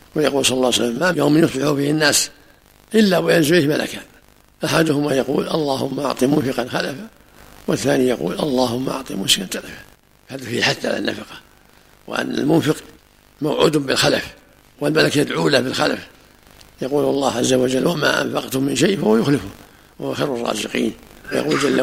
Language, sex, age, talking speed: Arabic, male, 60-79, 145 wpm